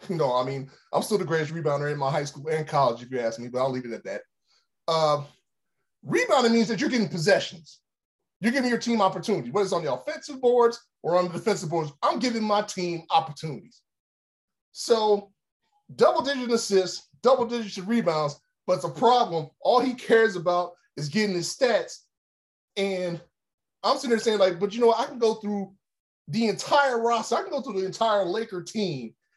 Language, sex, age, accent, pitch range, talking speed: English, male, 20-39, American, 160-230 Hz, 190 wpm